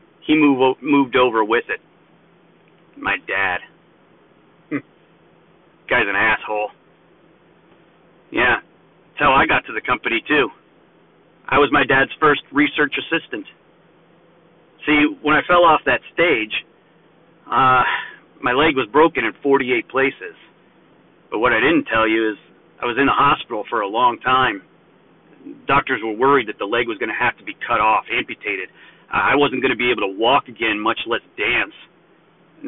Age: 40-59